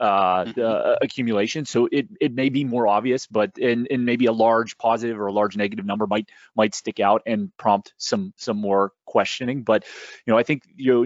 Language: English